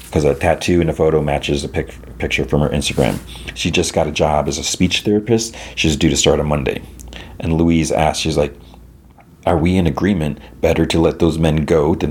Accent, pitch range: American, 75-85 Hz